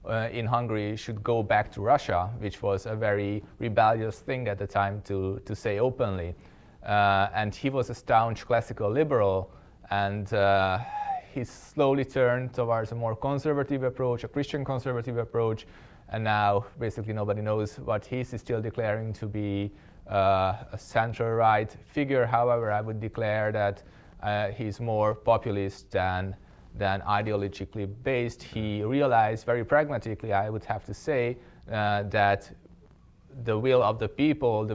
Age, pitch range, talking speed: 20-39, 100-115 Hz, 155 wpm